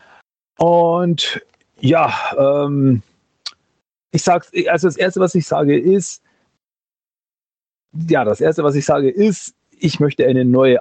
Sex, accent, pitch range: male, German, 125-175 Hz